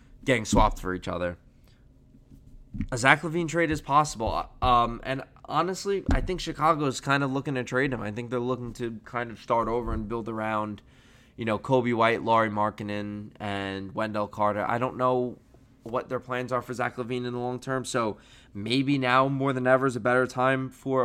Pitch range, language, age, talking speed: 115-135 Hz, English, 20-39, 200 wpm